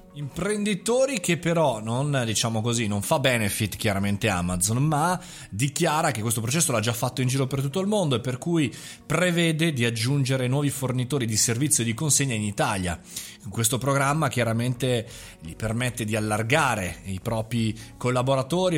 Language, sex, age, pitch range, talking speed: Italian, male, 30-49, 110-150 Hz, 160 wpm